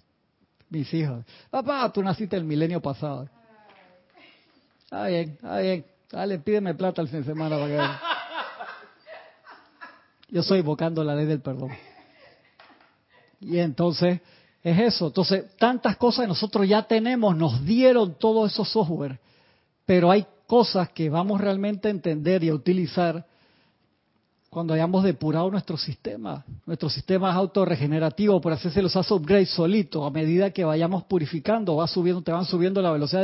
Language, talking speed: Spanish, 150 wpm